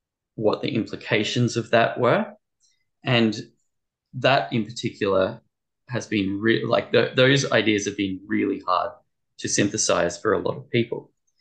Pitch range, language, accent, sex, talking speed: 100-125 Hz, English, Australian, male, 145 wpm